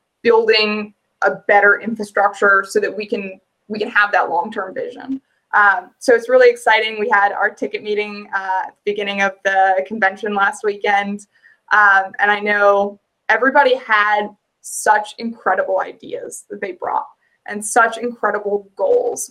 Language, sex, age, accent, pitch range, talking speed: English, female, 20-39, American, 200-255 Hz, 150 wpm